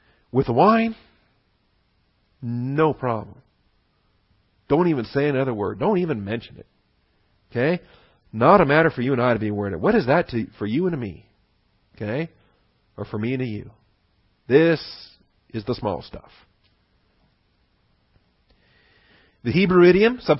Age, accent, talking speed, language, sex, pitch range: 40-59, American, 145 wpm, English, male, 110-155 Hz